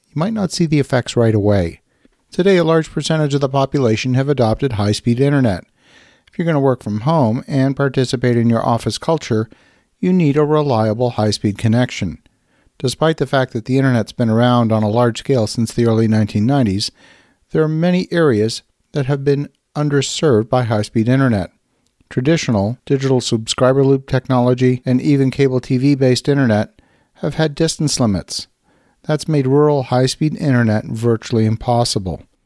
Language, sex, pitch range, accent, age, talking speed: English, male, 115-140 Hz, American, 50-69, 155 wpm